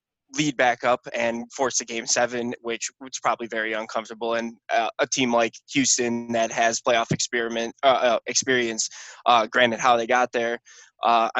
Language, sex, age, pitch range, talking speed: English, male, 20-39, 115-130 Hz, 170 wpm